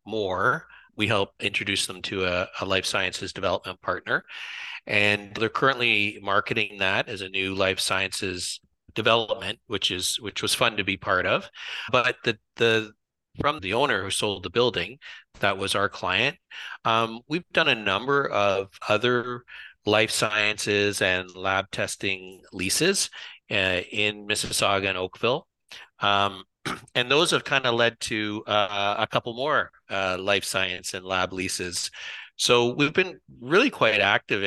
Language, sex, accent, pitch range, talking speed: English, male, American, 95-115 Hz, 155 wpm